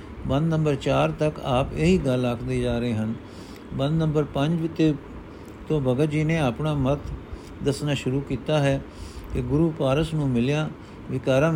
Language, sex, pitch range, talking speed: Punjabi, male, 120-145 Hz, 165 wpm